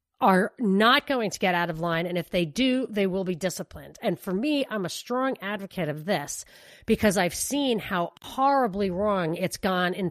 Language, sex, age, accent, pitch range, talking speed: English, female, 40-59, American, 185-235 Hz, 200 wpm